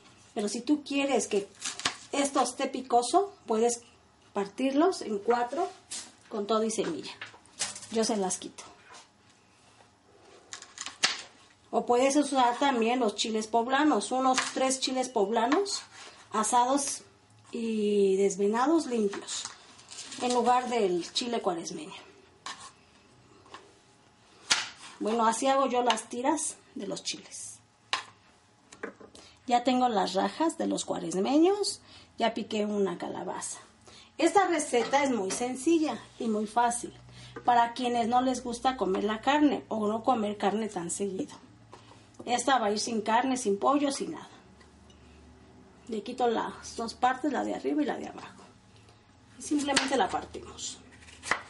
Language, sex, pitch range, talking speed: Spanish, female, 210-270 Hz, 125 wpm